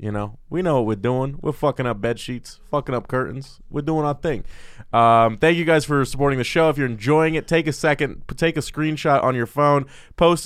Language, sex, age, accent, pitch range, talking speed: English, male, 20-39, American, 105-145 Hz, 235 wpm